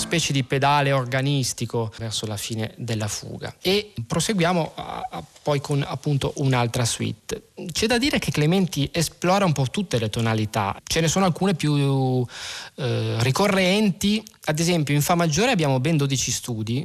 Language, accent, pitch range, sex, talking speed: Italian, native, 120-160 Hz, male, 160 wpm